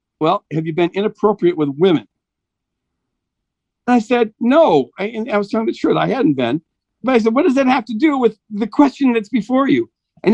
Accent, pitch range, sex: American, 150-215 Hz, male